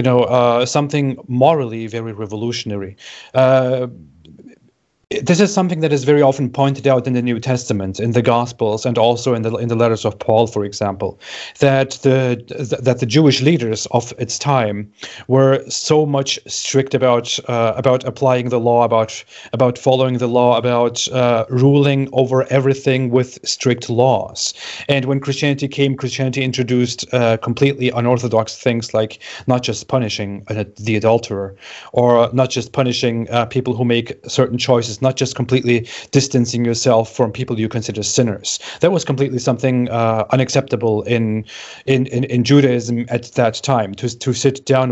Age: 30-49